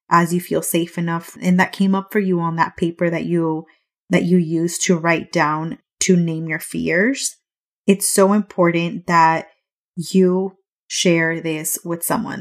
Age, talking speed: 20-39, 170 wpm